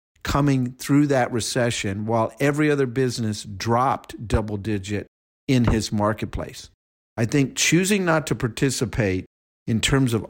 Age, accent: 50-69, American